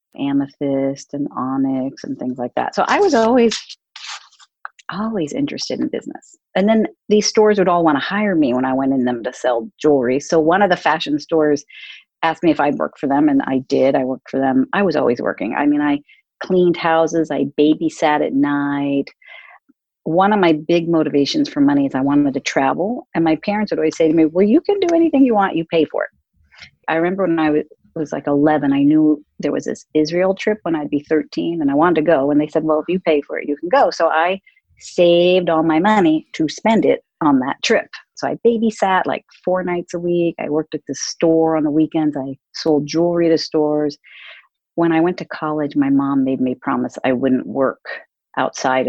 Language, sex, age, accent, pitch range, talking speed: English, female, 40-59, American, 145-195 Hz, 220 wpm